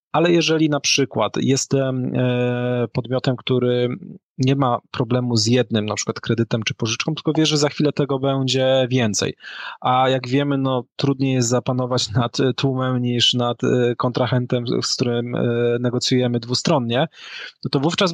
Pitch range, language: 120-140 Hz, Polish